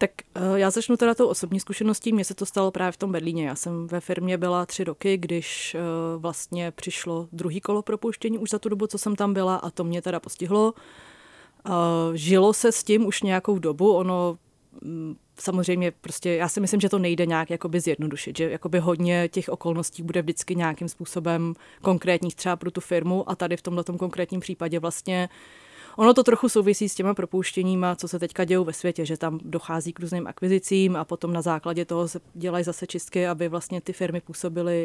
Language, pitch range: Czech, 170-190 Hz